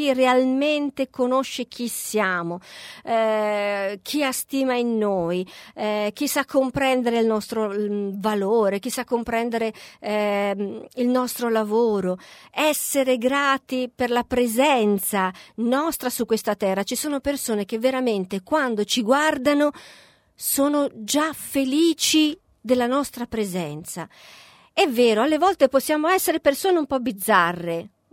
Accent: native